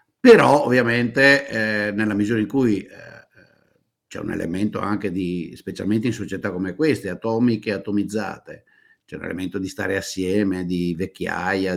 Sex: male